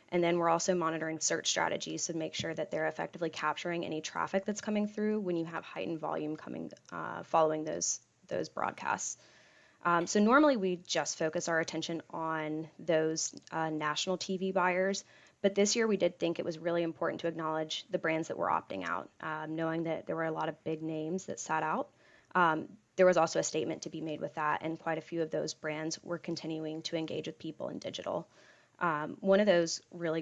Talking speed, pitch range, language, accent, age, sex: 210 wpm, 160-180 Hz, English, American, 10-29, female